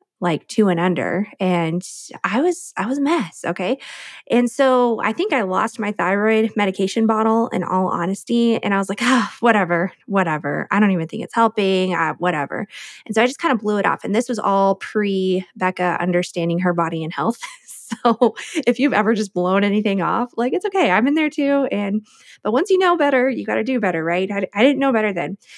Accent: American